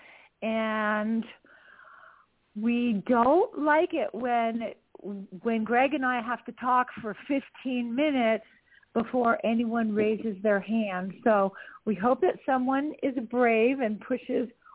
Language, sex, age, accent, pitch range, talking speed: English, female, 50-69, American, 205-270 Hz, 120 wpm